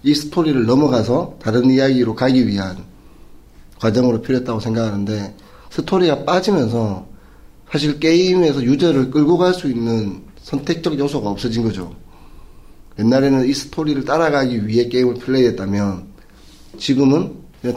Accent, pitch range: native, 105-140 Hz